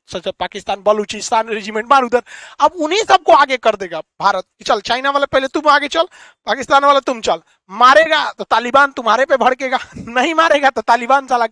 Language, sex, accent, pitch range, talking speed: Hindi, male, native, 235-300 Hz, 175 wpm